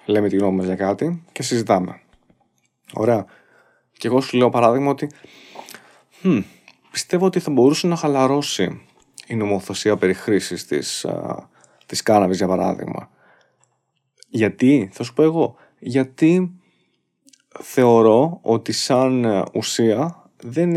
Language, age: Greek, 20-39